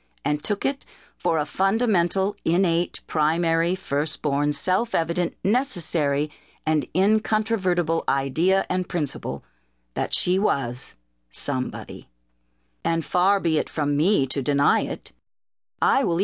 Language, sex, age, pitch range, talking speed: English, female, 50-69, 150-200 Hz, 115 wpm